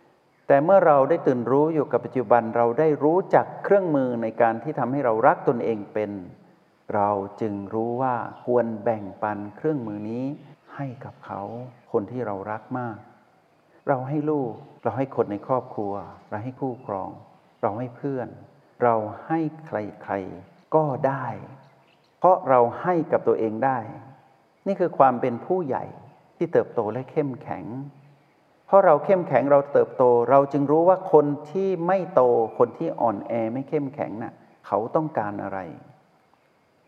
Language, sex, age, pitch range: Thai, male, 60-79, 115-145 Hz